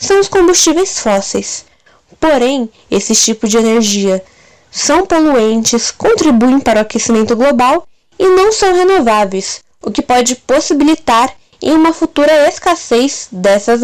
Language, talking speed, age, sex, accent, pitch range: Portuguese, 125 wpm, 10-29, female, Brazilian, 220-285 Hz